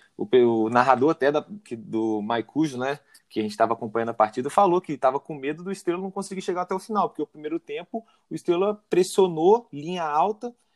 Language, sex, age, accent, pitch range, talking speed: Portuguese, male, 20-39, Brazilian, 125-180 Hz, 195 wpm